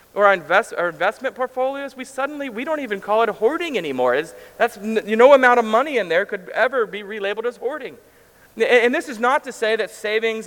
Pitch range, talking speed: 155-220 Hz, 230 wpm